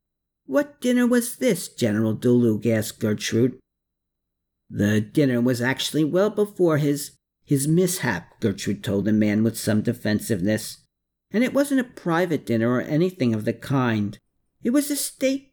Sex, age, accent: male, 50-69, American